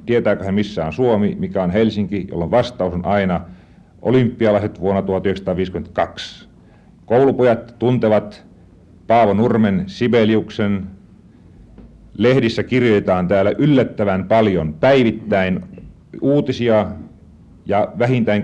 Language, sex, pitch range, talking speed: Finnish, male, 100-115 Hz, 95 wpm